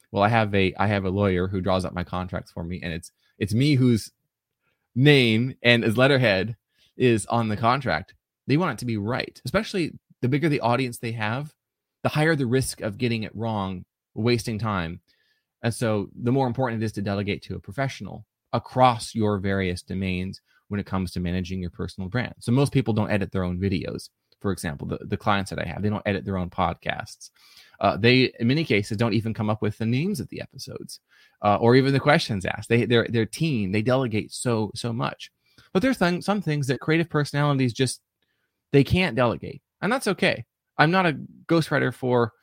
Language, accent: English, American